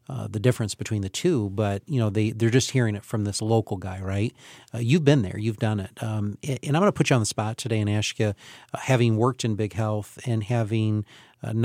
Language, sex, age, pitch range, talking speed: English, male, 40-59, 110-135 Hz, 240 wpm